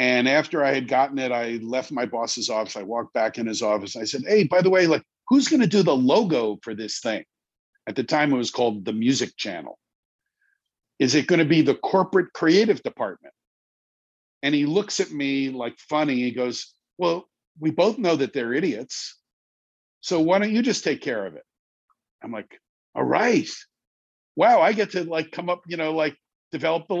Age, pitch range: 50-69, 120-170 Hz